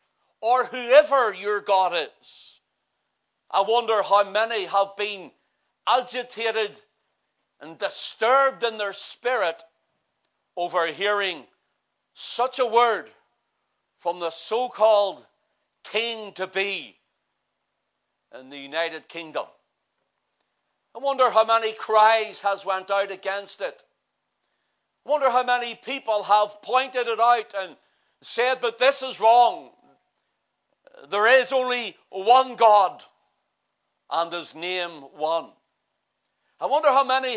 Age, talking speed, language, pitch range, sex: 60-79, 110 wpm, English, 200-245 Hz, male